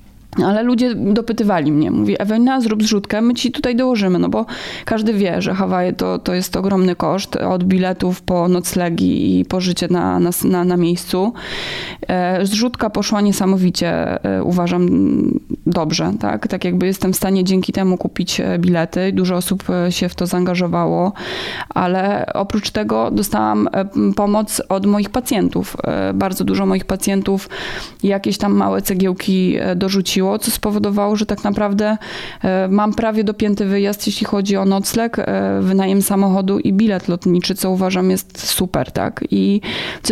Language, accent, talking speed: Polish, native, 140 wpm